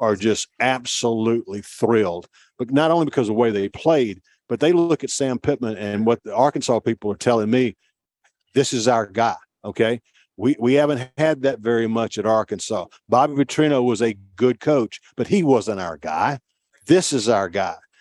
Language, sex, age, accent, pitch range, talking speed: English, male, 50-69, American, 105-125 Hz, 185 wpm